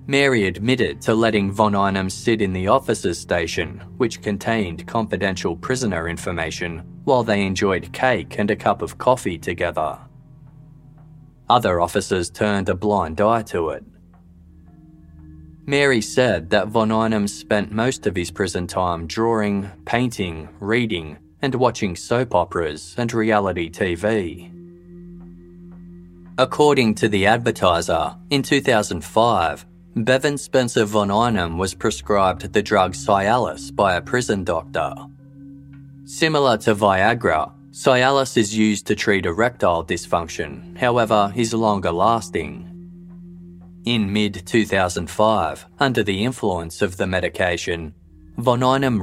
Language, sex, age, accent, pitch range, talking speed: English, male, 20-39, Australian, 85-125 Hz, 120 wpm